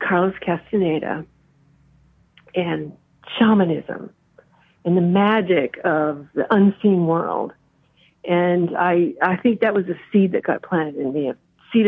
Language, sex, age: English, female, 50-69